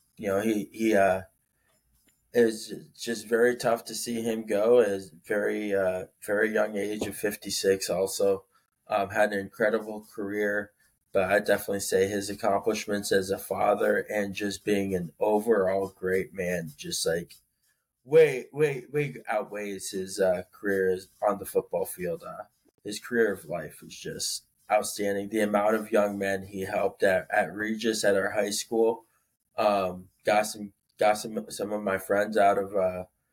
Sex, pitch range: male, 95-110 Hz